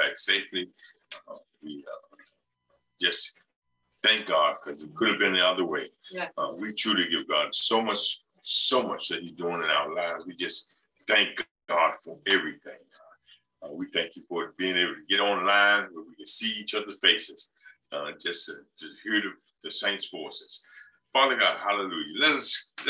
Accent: American